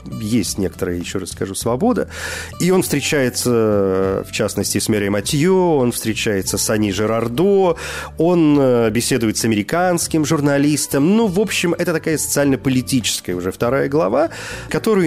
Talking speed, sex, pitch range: 135 wpm, male, 95-140 Hz